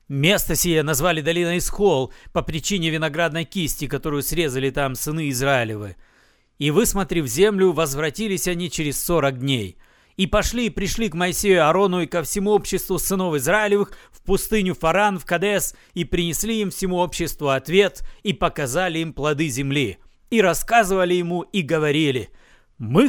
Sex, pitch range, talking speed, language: male, 160-235 Hz, 150 wpm, Russian